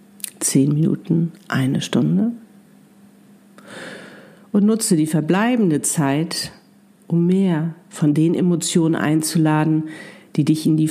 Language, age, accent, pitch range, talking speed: German, 50-69, German, 165-210 Hz, 105 wpm